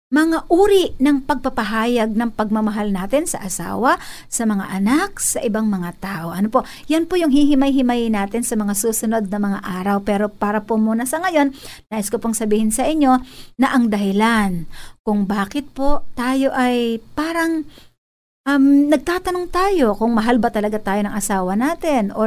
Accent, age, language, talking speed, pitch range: native, 50-69, Filipino, 165 wpm, 220-295 Hz